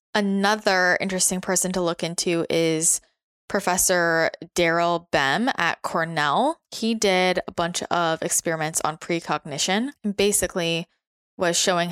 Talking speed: 115 wpm